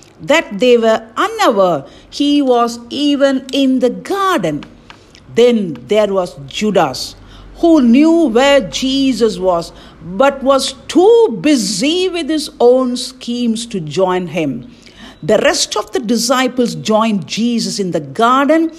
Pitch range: 220-280 Hz